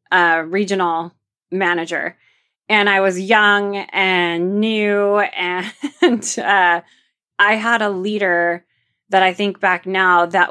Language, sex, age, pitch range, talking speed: English, female, 20-39, 175-205 Hz, 120 wpm